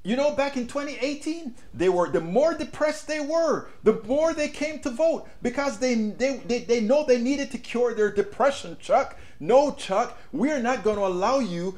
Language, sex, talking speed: English, male, 200 wpm